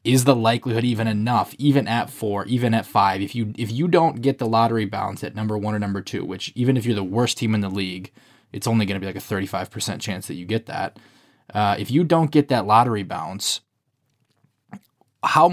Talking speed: 225 wpm